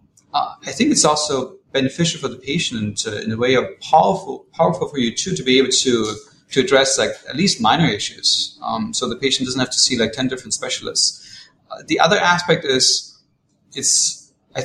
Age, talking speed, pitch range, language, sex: 30-49, 200 wpm, 120-170 Hz, English, male